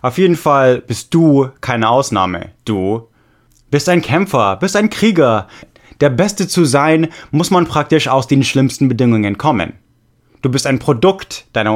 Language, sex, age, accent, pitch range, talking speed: English, male, 20-39, German, 115-150 Hz, 160 wpm